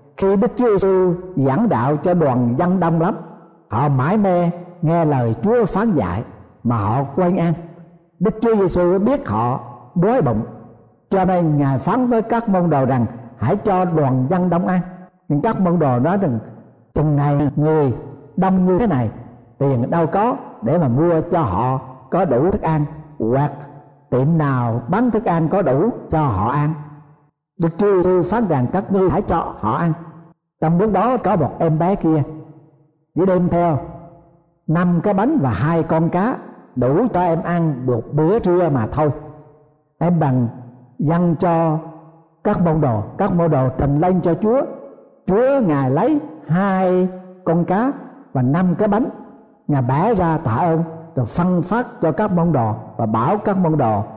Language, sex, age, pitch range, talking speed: Vietnamese, male, 60-79, 140-185 Hz, 180 wpm